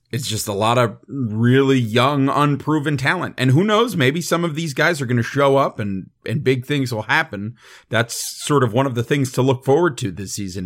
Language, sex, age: English, male, 40-59